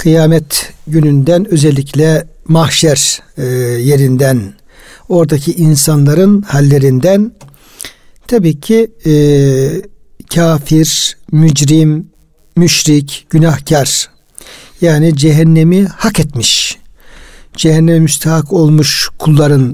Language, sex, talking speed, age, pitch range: Turkish, male, 75 wpm, 60-79, 145-175 Hz